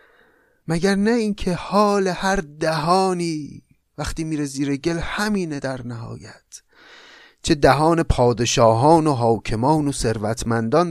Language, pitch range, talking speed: Persian, 120-165 Hz, 110 wpm